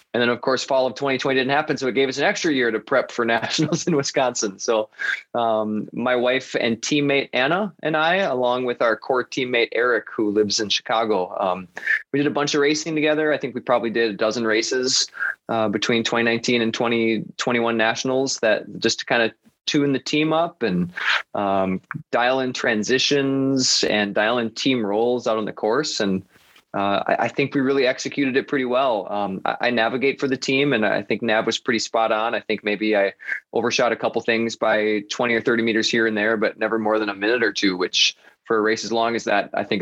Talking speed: 220 wpm